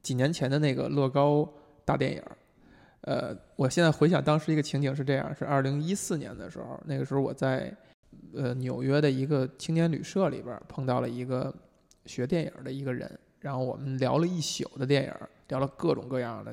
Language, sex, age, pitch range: Chinese, male, 20-39, 130-150 Hz